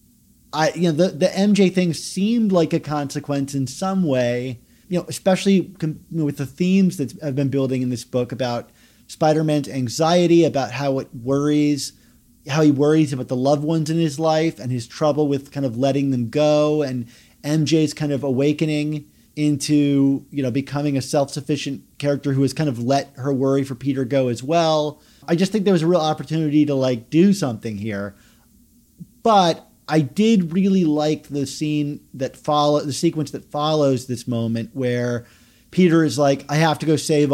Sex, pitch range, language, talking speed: male, 135-160 Hz, English, 190 wpm